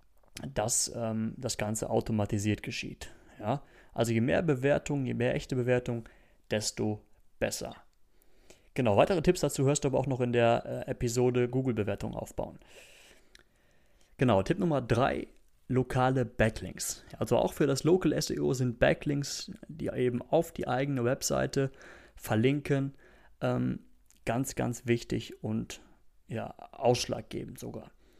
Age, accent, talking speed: 30-49, German, 130 wpm